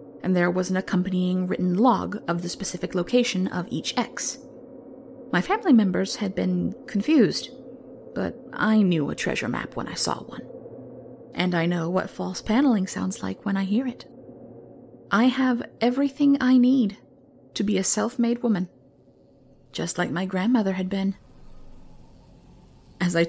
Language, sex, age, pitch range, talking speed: English, female, 30-49, 170-245 Hz, 155 wpm